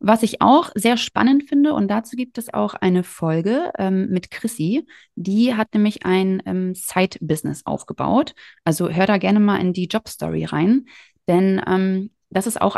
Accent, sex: German, female